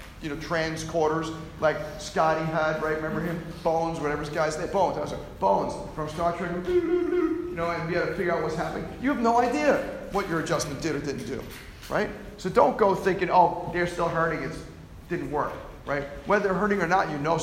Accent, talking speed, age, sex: American, 220 wpm, 40-59, male